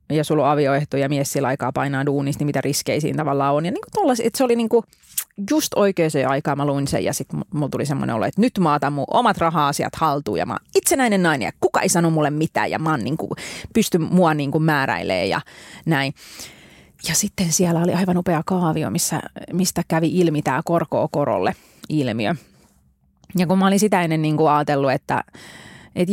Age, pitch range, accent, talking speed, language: 30-49, 145-190 Hz, native, 200 wpm, Finnish